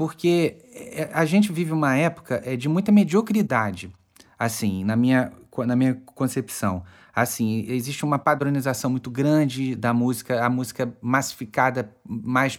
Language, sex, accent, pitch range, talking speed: Portuguese, male, Brazilian, 130-175 Hz, 125 wpm